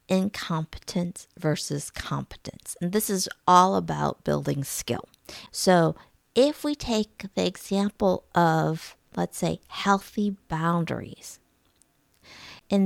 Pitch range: 160-200 Hz